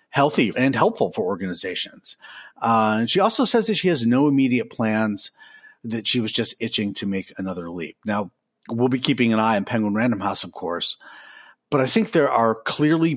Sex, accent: male, American